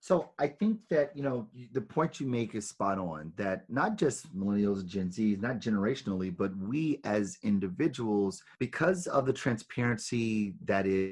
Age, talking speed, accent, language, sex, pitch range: 30-49, 165 wpm, American, English, male, 105-140 Hz